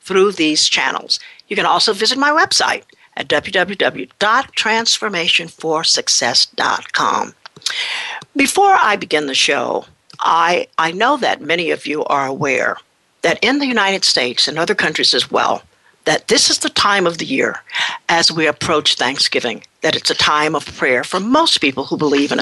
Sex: female